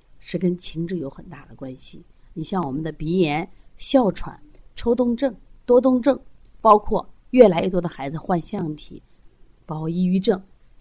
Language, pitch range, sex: Chinese, 160-240 Hz, female